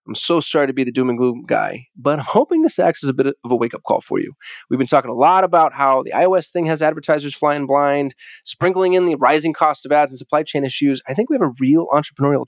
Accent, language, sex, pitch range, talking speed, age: American, English, male, 130-170 Hz, 270 wpm, 20-39